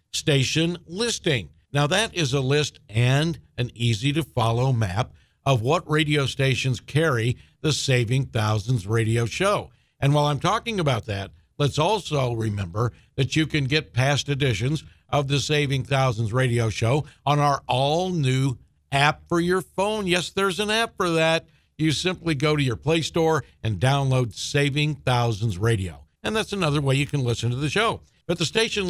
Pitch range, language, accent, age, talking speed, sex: 120-160 Hz, English, American, 50-69, 170 wpm, male